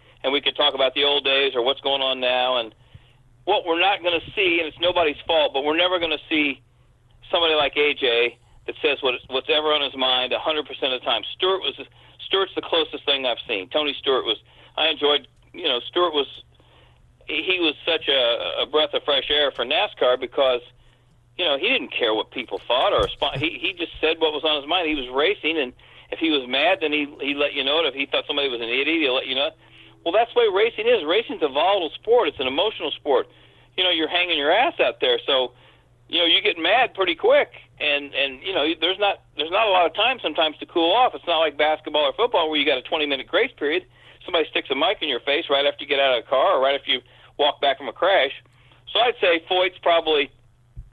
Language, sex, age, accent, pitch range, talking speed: English, male, 40-59, American, 130-170 Hz, 245 wpm